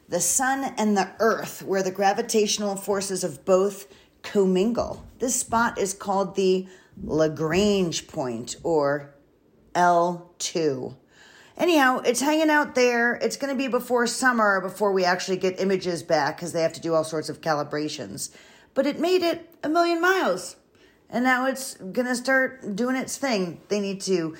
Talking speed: 160 wpm